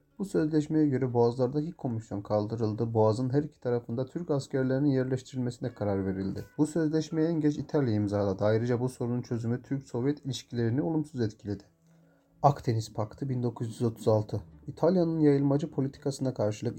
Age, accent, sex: 40-59, native, male